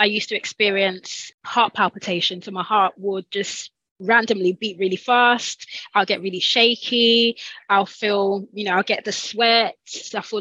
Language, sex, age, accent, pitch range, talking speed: English, female, 20-39, British, 200-230 Hz, 165 wpm